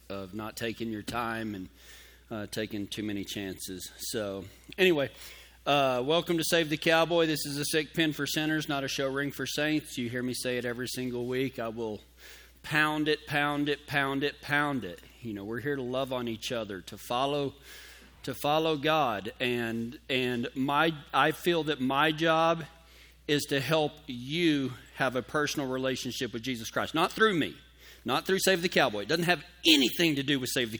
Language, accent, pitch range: English, American, 120-155 Hz